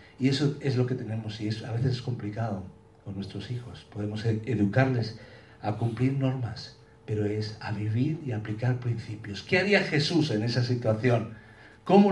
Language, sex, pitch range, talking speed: Spanish, male, 110-145 Hz, 165 wpm